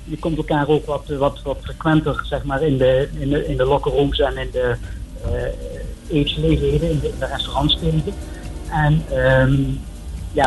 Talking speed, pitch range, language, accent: 170 wpm, 130-155 Hz, Dutch, Dutch